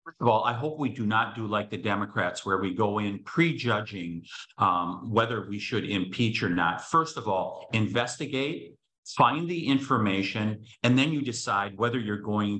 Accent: American